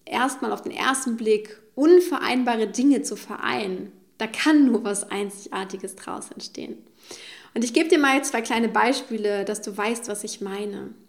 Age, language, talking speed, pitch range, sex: 20-39, German, 170 wpm, 220-265 Hz, female